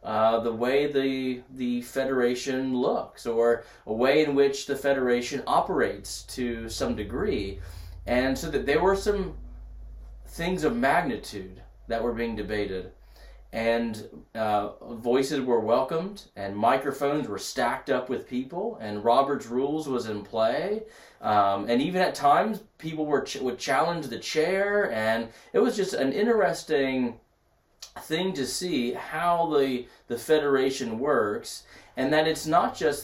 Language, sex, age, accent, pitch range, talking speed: English, male, 30-49, American, 110-140 Hz, 145 wpm